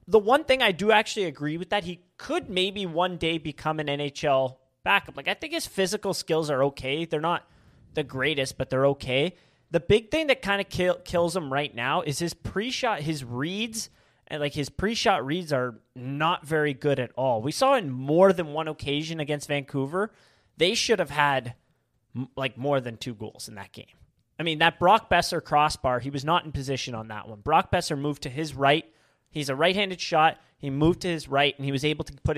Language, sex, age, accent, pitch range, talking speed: English, male, 30-49, American, 140-175 Hz, 215 wpm